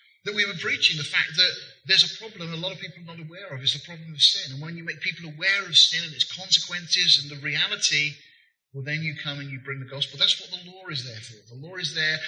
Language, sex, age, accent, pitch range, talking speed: English, male, 30-49, British, 150-185 Hz, 280 wpm